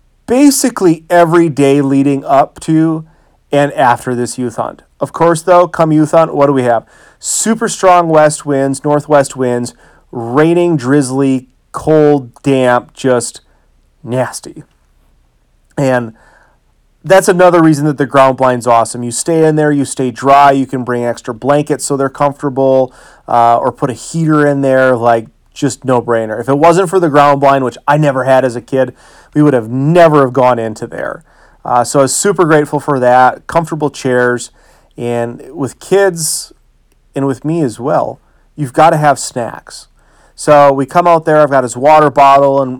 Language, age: English, 30-49